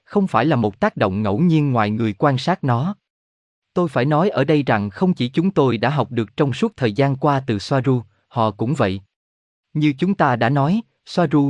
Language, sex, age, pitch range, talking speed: Vietnamese, male, 20-39, 110-155 Hz, 220 wpm